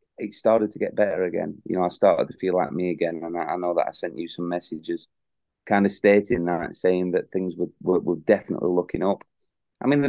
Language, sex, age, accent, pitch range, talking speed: English, male, 30-49, British, 90-115 Hz, 245 wpm